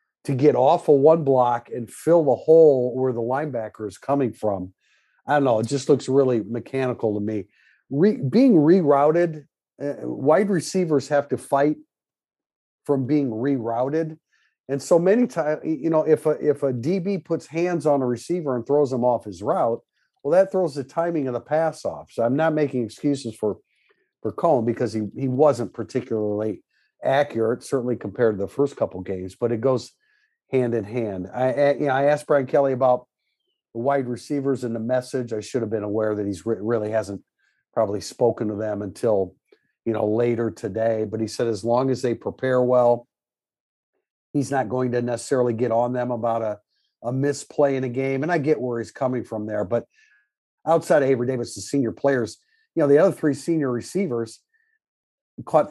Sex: male